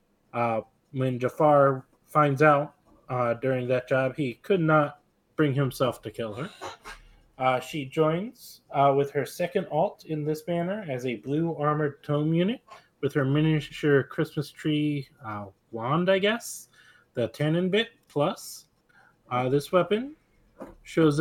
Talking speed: 145 wpm